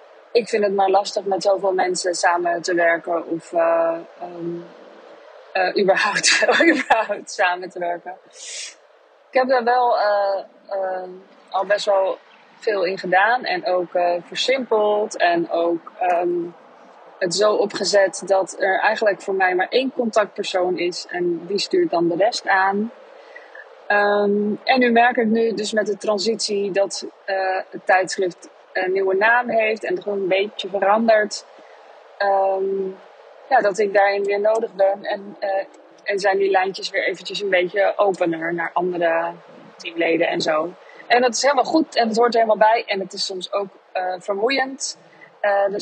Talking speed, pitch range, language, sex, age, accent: 160 wpm, 185-225 Hz, Dutch, female, 20-39, Dutch